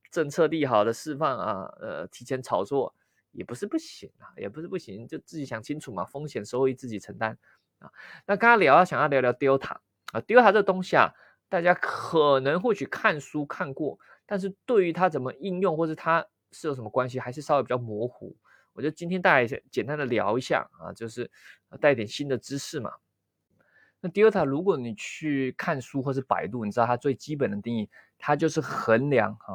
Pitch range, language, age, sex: 120-165 Hz, Chinese, 20-39, male